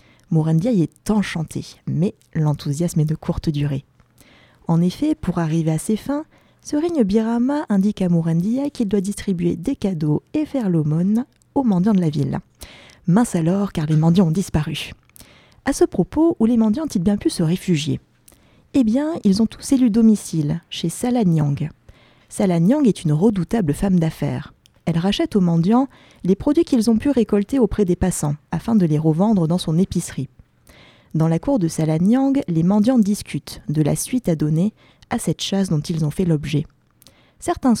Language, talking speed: French, 180 wpm